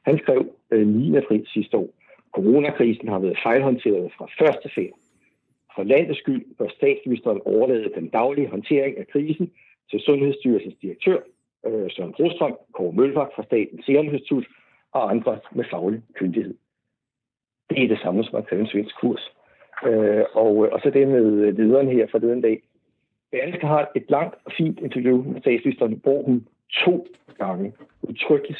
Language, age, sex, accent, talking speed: Danish, 60-79, male, native, 165 wpm